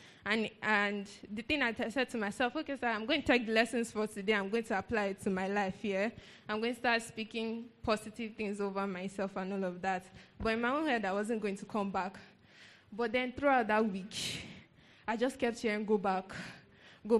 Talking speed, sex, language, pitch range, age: 225 wpm, female, English, 200-235 Hz, 10-29